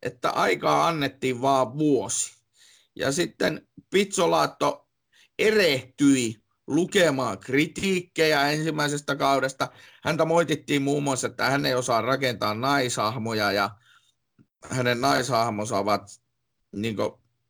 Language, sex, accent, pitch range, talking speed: Finnish, male, native, 125-160 Hz, 95 wpm